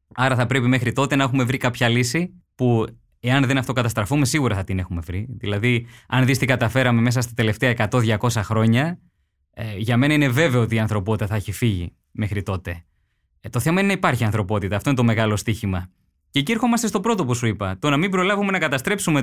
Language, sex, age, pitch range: Greek, male, 20-39, 110-160 Hz